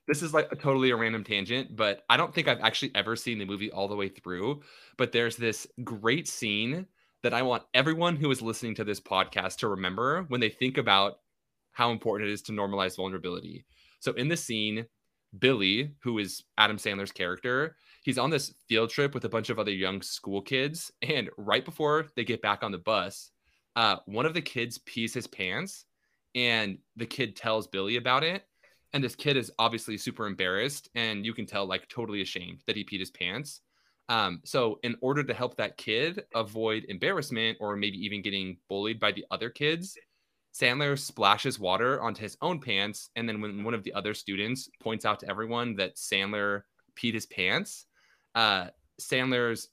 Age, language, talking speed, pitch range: 20-39, English, 195 wpm, 100-130 Hz